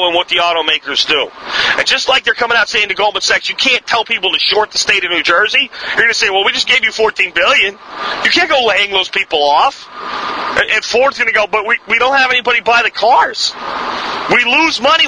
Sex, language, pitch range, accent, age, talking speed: male, English, 165-245 Hz, American, 40-59, 245 wpm